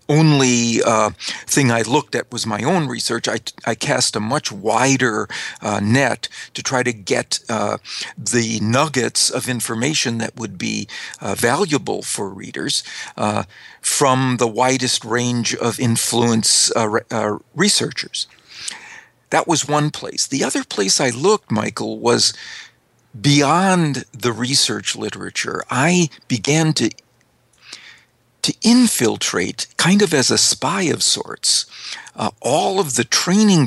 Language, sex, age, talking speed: English, male, 50-69, 135 wpm